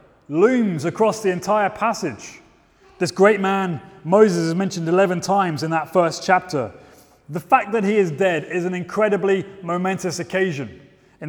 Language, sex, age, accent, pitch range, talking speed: English, male, 30-49, British, 170-210 Hz, 155 wpm